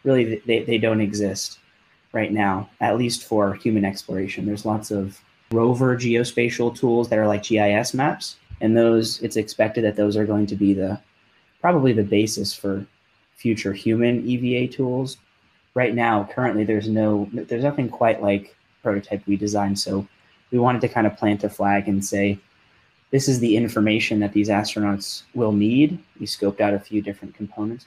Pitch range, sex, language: 100-115 Hz, male, English